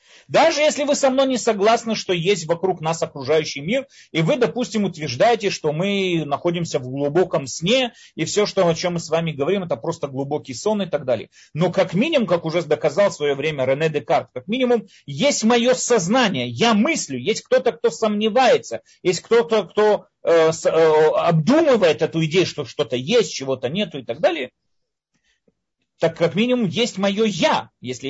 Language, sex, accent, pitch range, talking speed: Russian, male, native, 145-215 Hz, 180 wpm